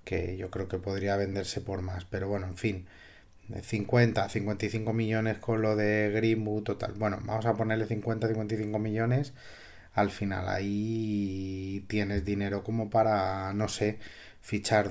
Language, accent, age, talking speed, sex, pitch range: Spanish, Spanish, 30-49, 150 wpm, male, 100-115 Hz